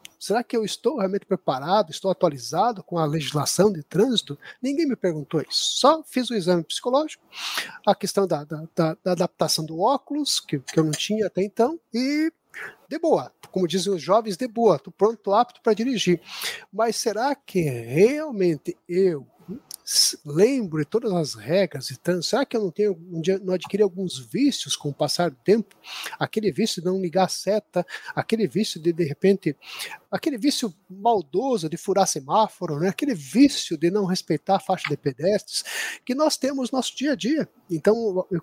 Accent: Brazilian